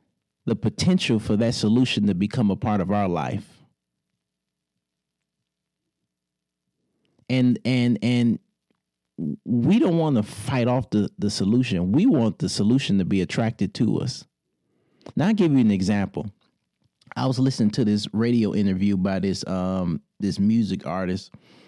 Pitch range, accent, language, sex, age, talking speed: 95-115 Hz, American, English, male, 30-49, 145 wpm